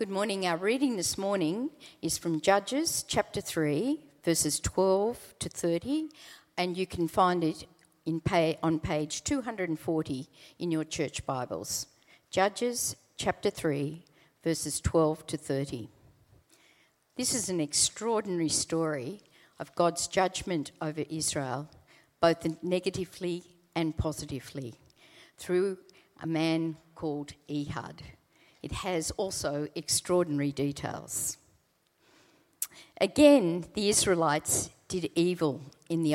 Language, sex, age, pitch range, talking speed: English, female, 60-79, 150-185 Hz, 110 wpm